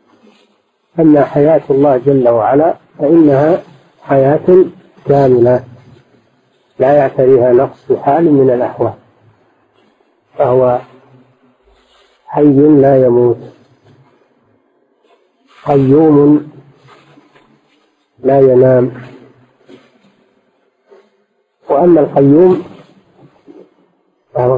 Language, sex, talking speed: Arabic, male, 60 wpm